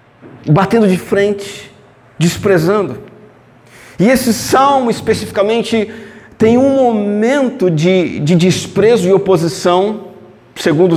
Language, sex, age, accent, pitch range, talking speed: Portuguese, male, 50-69, Brazilian, 170-230 Hz, 95 wpm